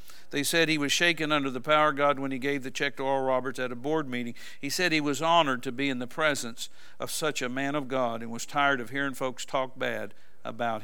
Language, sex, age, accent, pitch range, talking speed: English, male, 60-79, American, 125-140 Hz, 260 wpm